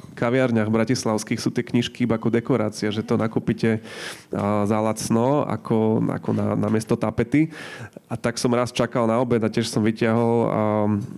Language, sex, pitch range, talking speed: Slovak, male, 110-125 Hz, 170 wpm